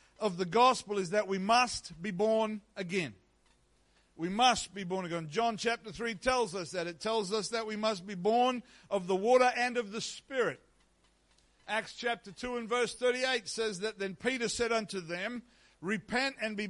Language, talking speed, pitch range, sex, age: English, 185 wpm, 180-230 Hz, male, 60-79